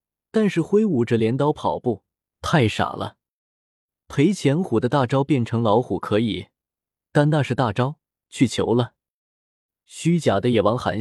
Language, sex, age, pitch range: Chinese, male, 20-39, 105-150 Hz